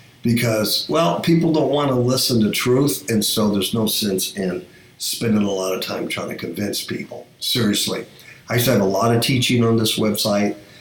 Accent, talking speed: American, 200 wpm